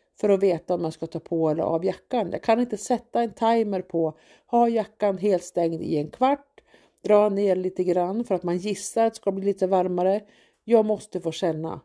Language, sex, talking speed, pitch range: Swedish, female, 220 wpm, 180-255 Hz